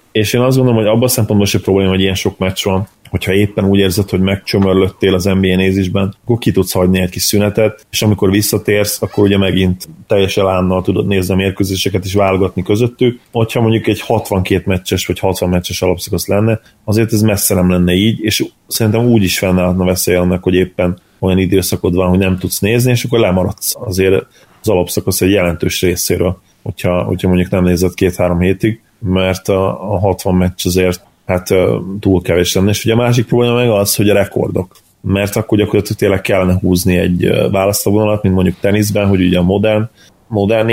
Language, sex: Hungarian, male